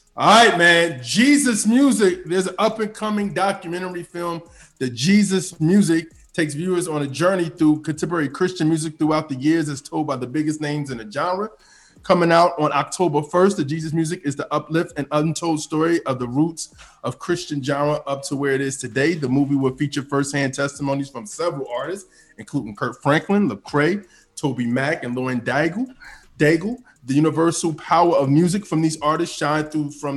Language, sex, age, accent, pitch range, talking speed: English, male, 20-39, American, 140-170 Hz, 180 wpm